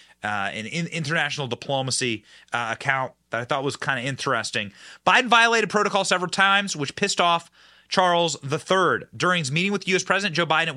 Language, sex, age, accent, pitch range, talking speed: English, male, 30-49, American, 160-215 Hz, 185 wpm